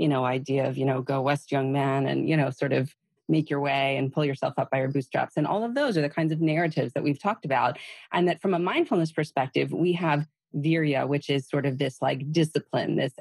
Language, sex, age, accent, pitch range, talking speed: English, female, 30-49, American, 145-190 Hz, 250 wpm